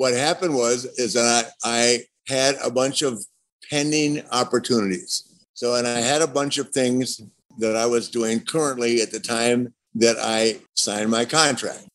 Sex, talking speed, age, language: male, 170 wpm, 50-69, English